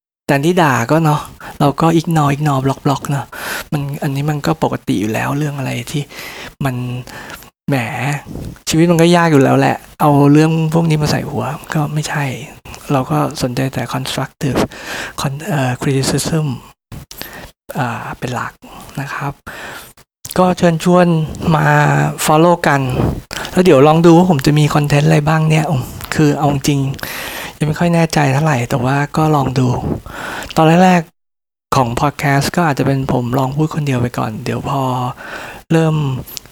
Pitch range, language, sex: 130-155 Hz, Thai, male